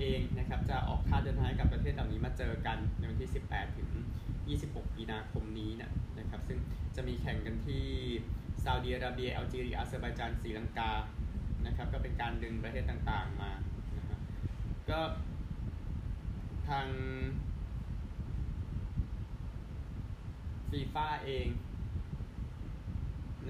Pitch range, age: 90-125 Hz, 20-39